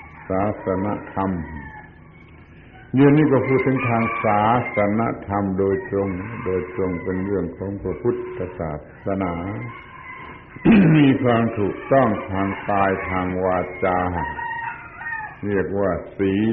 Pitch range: 95-120 Hz